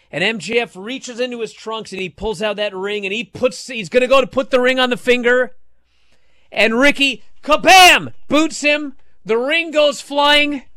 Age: 40-59